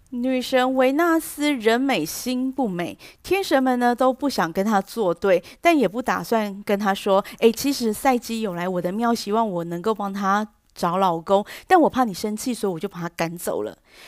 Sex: female